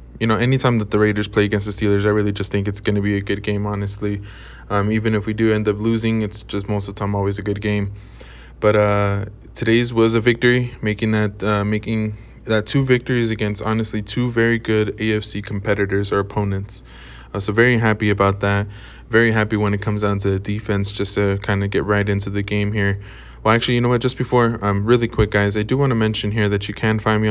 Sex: male